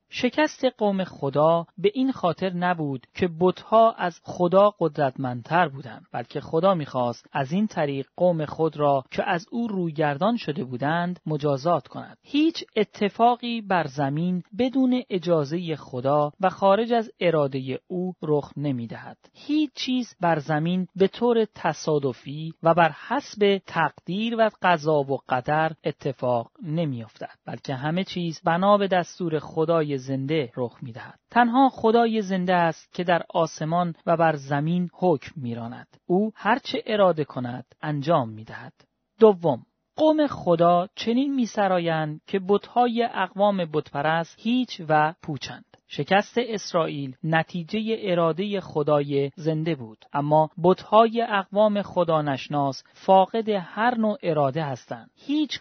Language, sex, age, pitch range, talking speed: Persian, male, 40-59, 150-205 Hz, 130 wpm